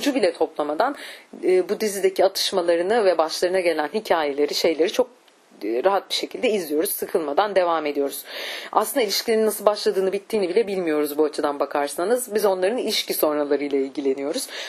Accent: native